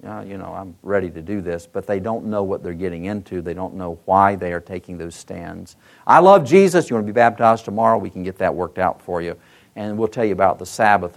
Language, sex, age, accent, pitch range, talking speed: English, male, 50-69, American, 100-145 Hz, 265 wpm